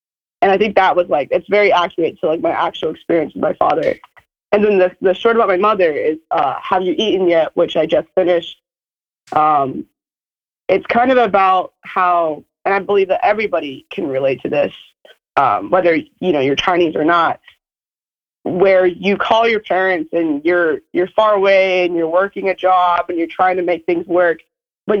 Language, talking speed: English, 195 wpm